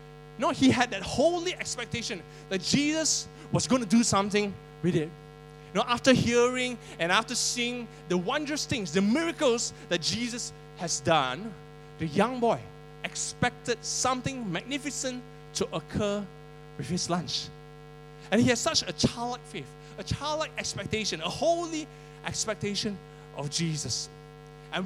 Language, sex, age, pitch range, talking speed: English, male, 20-39, 150-215 Hz, 140 wpm